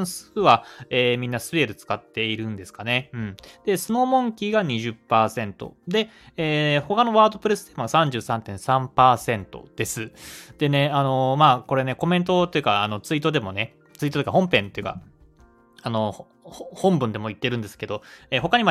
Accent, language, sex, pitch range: native, Japanese, male, 110-175 Hz